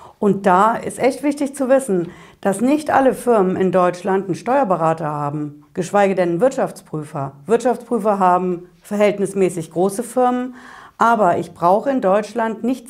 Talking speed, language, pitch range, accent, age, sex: 140 wpm, German, 180-235 Hz, German, 60-79, female